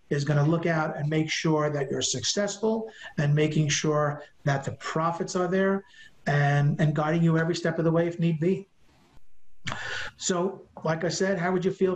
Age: 50-69